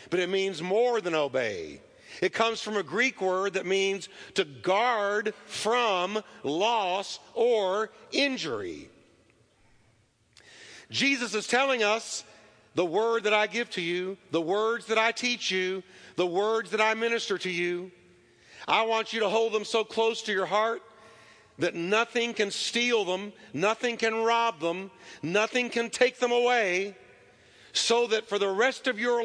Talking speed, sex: 155 wpm, male